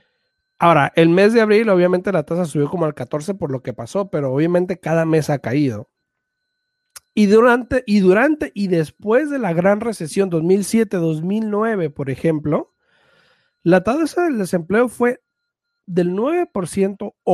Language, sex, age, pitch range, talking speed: Spanish, male, 40-59, 165-240 Hz, 145 wpm